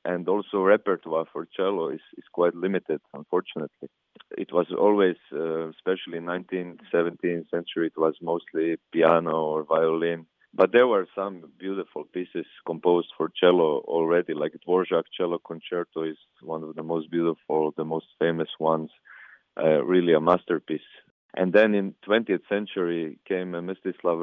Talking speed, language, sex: 145 wpm, English, male